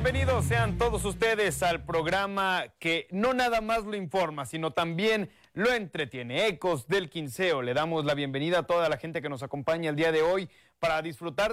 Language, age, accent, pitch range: Spanish, 30-49, Mexican, 130-180 Hz